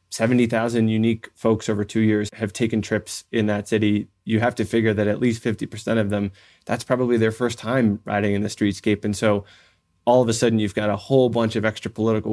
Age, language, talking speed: 20-39, English, 220 wpm